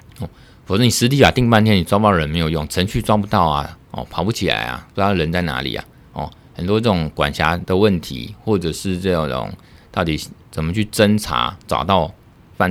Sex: male